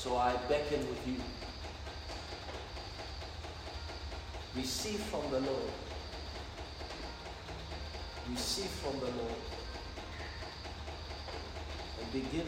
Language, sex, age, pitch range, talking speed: English, male, 50-69, 75-95 Hz, 70 wpm